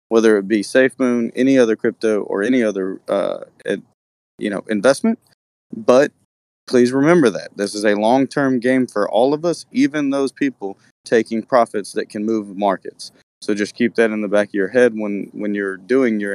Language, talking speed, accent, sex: English, 185 wpm, American, male